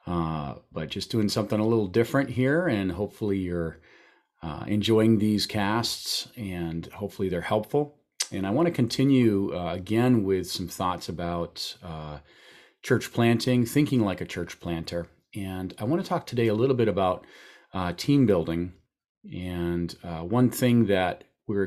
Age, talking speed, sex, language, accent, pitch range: 40-59, 160 wpm, male, English, American, 90-115 Hz